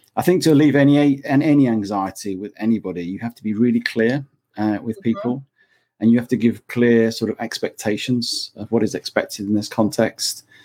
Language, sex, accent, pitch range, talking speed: English, male, British, 105-125 Hz, 185 wpm